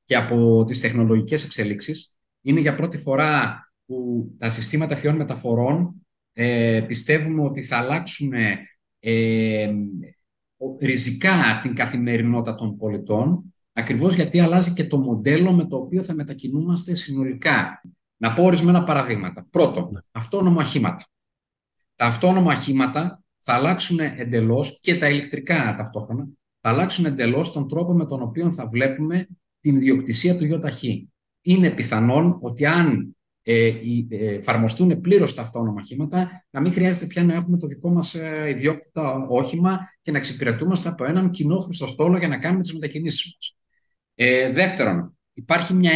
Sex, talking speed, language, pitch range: male, 135 wpm, Greek, 120-170 Hz